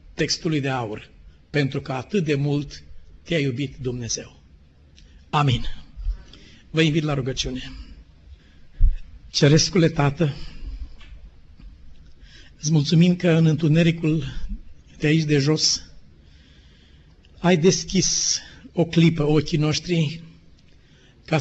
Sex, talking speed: male, 95 wpm